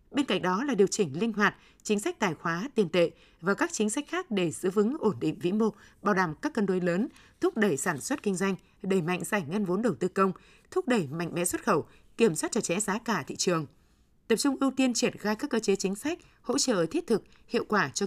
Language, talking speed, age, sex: Vietnamese, 260 wpm, 20-39, female